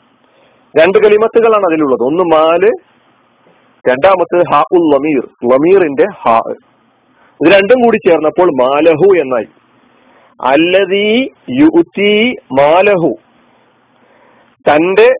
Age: 40-59